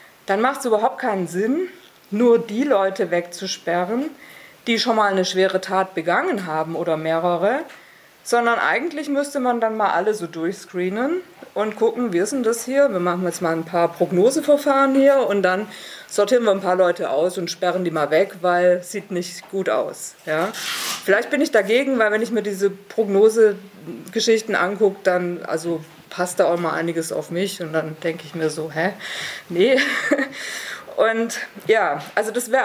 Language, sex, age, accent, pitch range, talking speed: German, female, 50-69, German, 180-240 Hz, 175 wpm